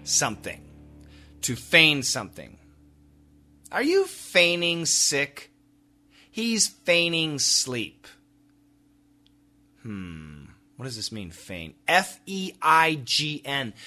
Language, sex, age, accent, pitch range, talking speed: English, male, 30-49, American, 125-185 Hz, 80 wpm